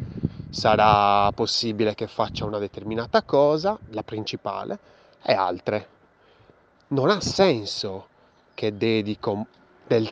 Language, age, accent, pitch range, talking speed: Italian, 20-39, native, 110-135 Hz, 100 wpm